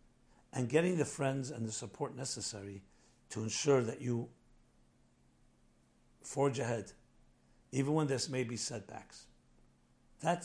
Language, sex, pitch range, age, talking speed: English, male, 120-160 Hz, 60-79, 120 wpm